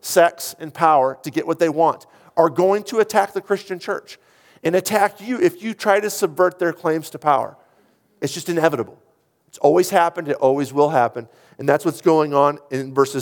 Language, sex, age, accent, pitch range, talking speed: English, male, 40-59, American, 120-165 Hz, 200 wpm